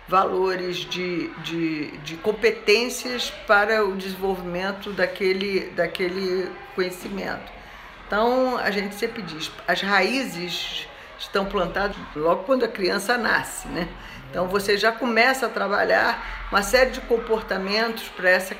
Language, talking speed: Portuguese, 125 wpm